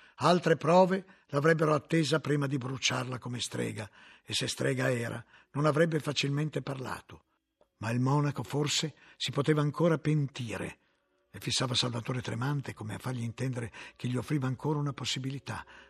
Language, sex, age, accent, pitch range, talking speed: Italian, male, 50-69, native, 120-150 Hz, 145 wpm